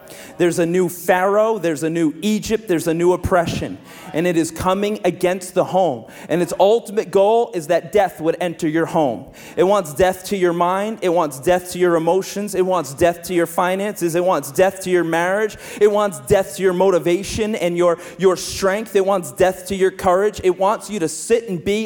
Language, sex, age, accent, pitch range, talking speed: English, male, 30-49, American, 175-215 Hz, 210 wpm